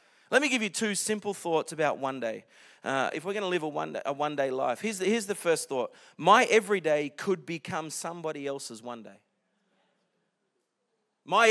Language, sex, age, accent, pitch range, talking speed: English, male, 30-49, Australian, 140-185 Hz, 205 wpm